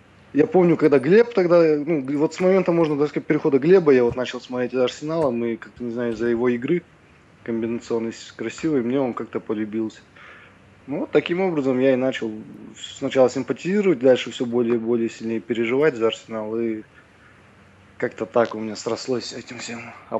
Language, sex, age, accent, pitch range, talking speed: Russian, male, 20-39, native, 120-155 Hz, 180 wpm